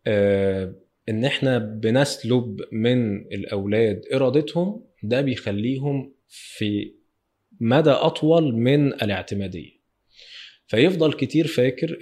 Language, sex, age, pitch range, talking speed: Arabic, male, 20-39, 110-150 Hz, 85 wpm